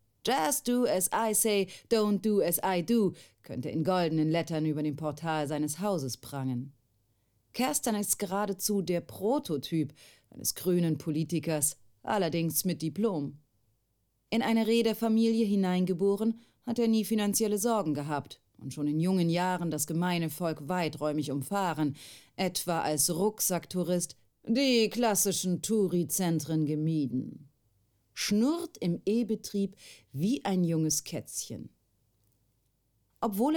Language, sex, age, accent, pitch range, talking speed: German, female, 30-49, German, 150-215 Hz, 120 wpm